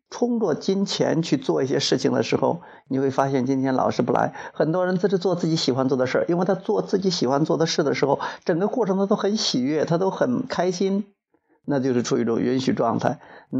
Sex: male